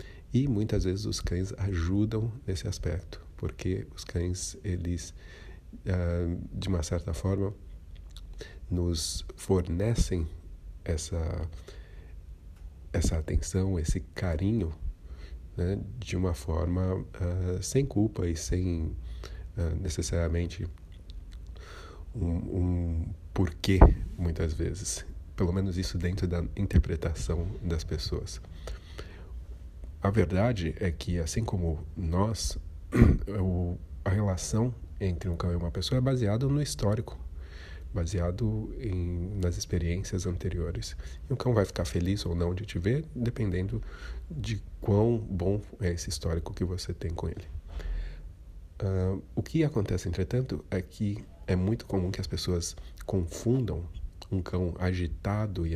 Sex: male